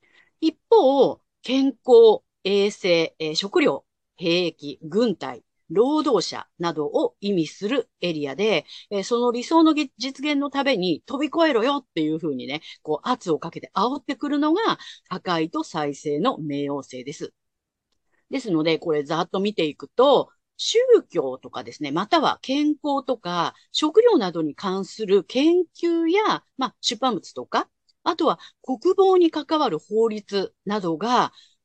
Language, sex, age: Japanese, female, 40-59